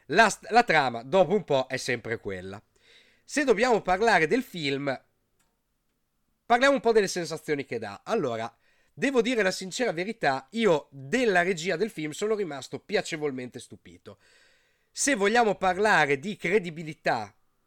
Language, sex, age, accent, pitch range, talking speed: Italian, male, 30-49, native, 135-205 Hz, 140 wpm